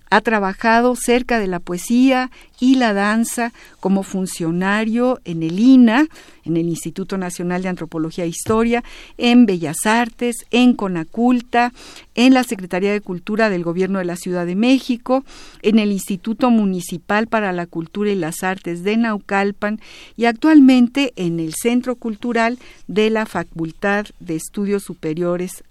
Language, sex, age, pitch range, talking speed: Spanish, female, 50-69, 175-240 Hz, 145 wpm